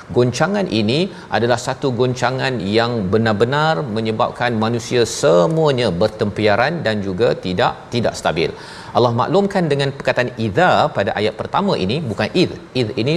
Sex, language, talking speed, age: male, Malayalam, 130 wpm, 40-59